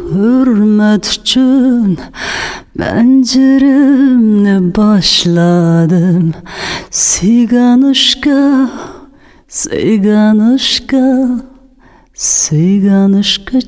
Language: Chinese